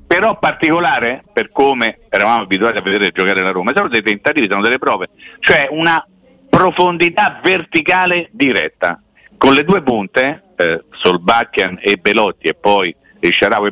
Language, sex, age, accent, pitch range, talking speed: Italian, male, 50-69, native, 115-185 Hz, 150 wpm